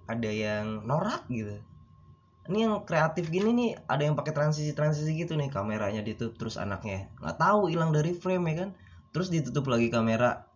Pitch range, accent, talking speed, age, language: 95-140 Hz, native, 170 wpm, 20-39, Indonesian